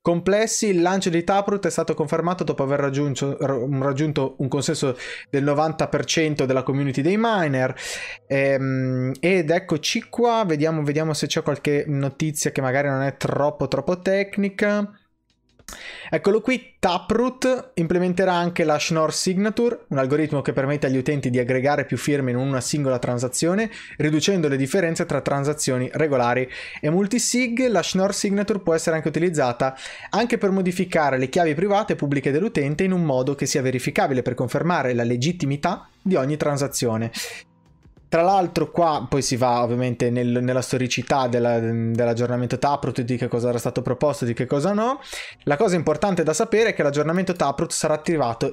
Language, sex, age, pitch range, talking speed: Italian, male, 20-39, 135-180 Hz, 160 wpm